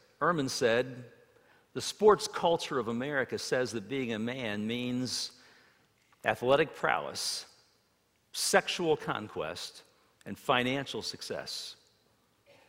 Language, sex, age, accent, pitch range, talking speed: English, male, 50-69, American, 95-125 Hz, 95 wpm